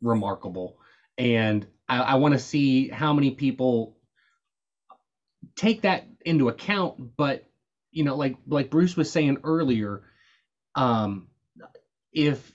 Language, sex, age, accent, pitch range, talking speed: English, male, 20-39, American, 115-135 Hz, 115 wpm